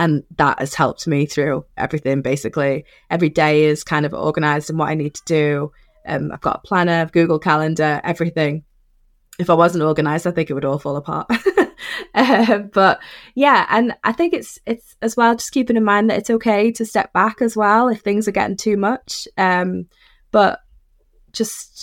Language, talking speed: English, 190 wpm